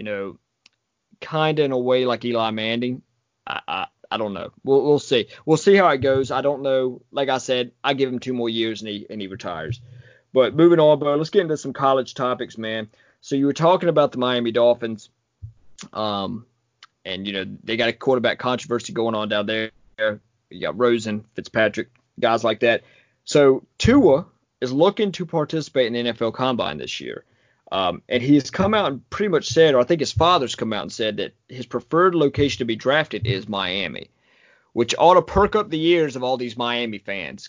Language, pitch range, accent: English, 115-155 Hz, American